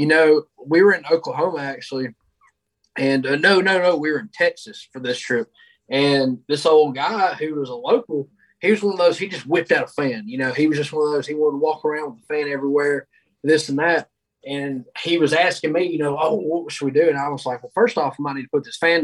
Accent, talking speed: American, 265 wpm